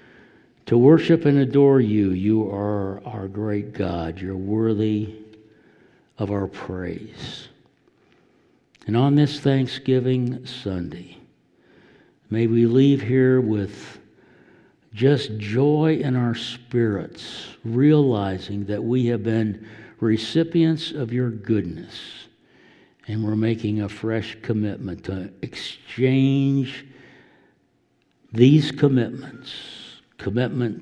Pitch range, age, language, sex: 105-130 Hz, 60-79, English, male